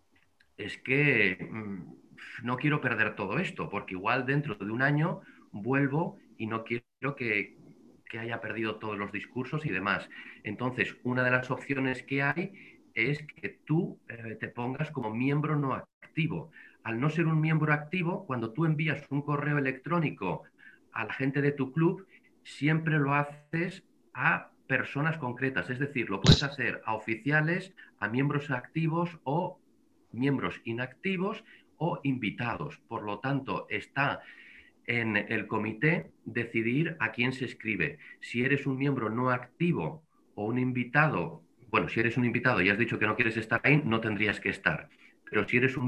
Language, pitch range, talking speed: Spanish, 115-150 Hz, 160 wpm